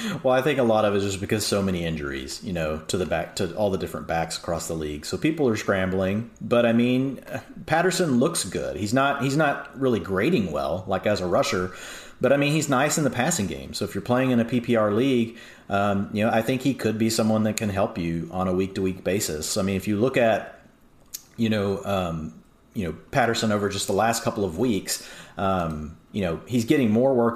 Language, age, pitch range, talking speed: English, 40-59, 95-115 Hz, 240 wpm